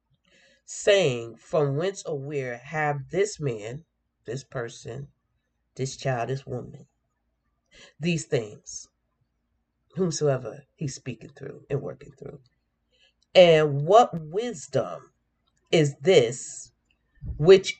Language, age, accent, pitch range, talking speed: English, 40-59, American, 125-155 Hz, 100 wpm